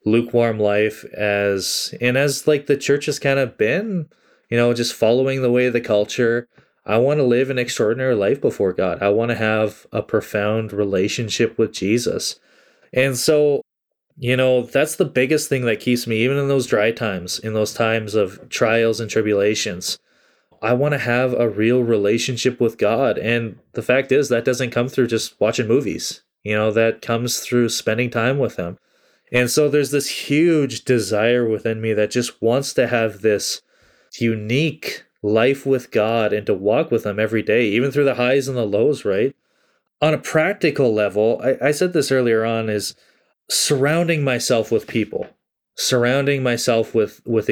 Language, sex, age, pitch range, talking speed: English, male, 20-39, 110-130 Hz, 180 wpm